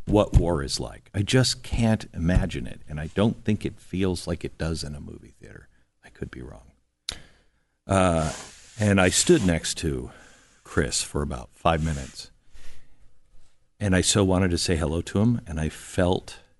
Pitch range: 70-110 Hz